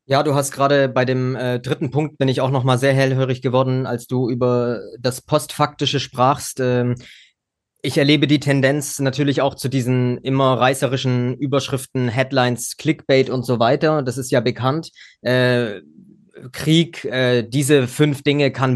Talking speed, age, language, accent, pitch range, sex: 165 wpm, 20-39, German, German, 125-140 Hz, male